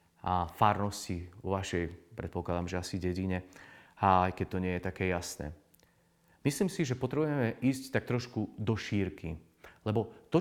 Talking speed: 155 wpm